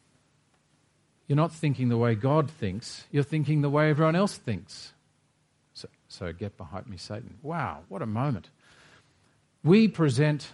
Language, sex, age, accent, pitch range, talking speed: English, male, 50-69, Australian, 115-155 Hz, 150 wpm